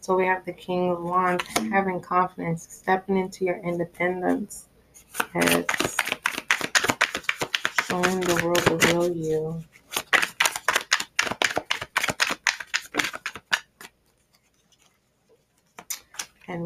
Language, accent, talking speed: English, American, 70 wpm